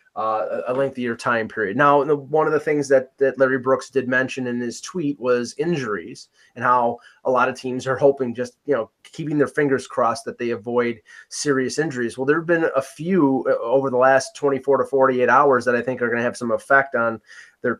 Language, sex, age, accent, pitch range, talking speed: English, male, 20-39, American, 120-140 Hz, 215 wpm